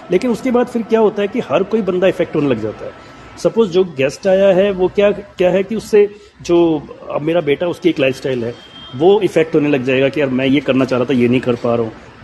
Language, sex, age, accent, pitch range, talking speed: Hindi, male, 30-49, native, 140-210 Hz, 265 wpm